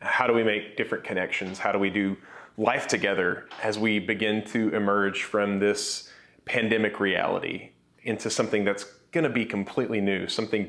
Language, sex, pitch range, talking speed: English, male, 100-120 Hz, 165 wpm